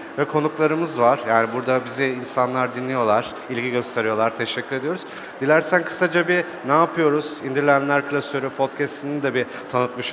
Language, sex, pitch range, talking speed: Turkish, male, 130-160 Hz, 135 wpm